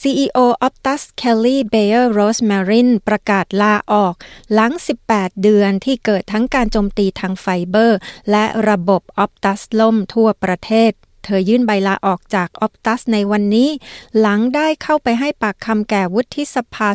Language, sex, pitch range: Thai, female, 195-230 Hz